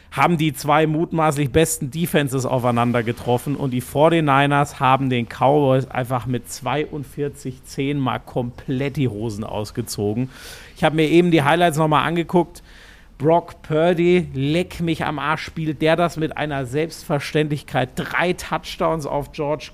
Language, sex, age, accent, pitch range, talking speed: German, male, 50-69, German, 140-170 Hz, 145 wpm